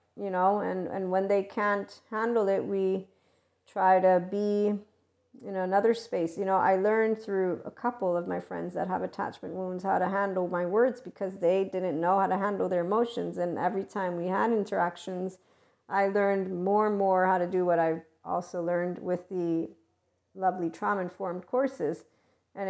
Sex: female